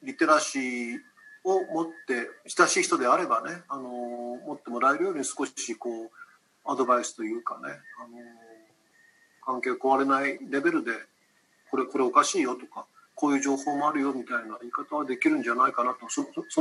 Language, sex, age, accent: Japanese, male, 40-59, native